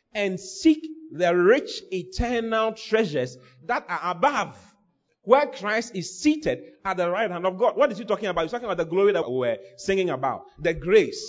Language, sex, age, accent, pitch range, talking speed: English, male, 30-49, Nigerian, 170-245 Hz, 185 wpm